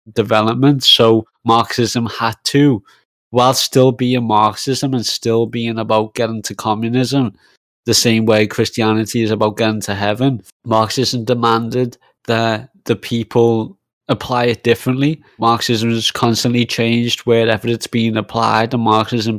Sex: male